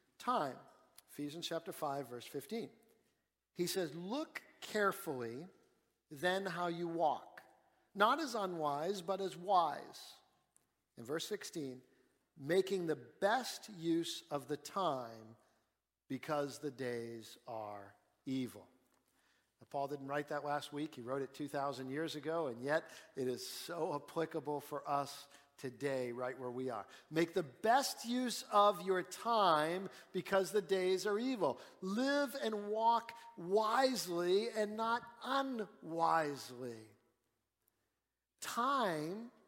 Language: English